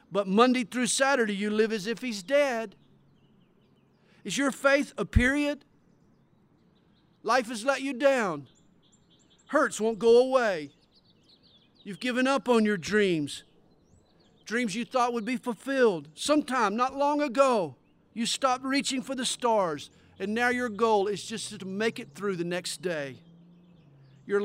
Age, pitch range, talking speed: 50-69, 195-260 Hz, 145 wpm